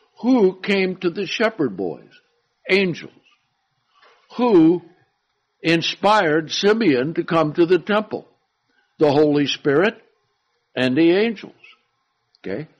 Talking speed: 105 wpm